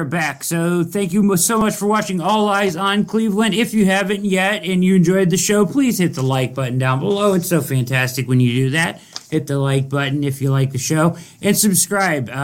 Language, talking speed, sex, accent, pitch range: English, 220 wpm, male, American, 130-170 Hz